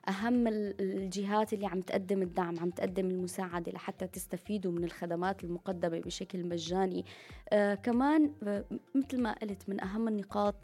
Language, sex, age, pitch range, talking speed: Arabic, female, 20-39, 185-225 Hz, 135 wpm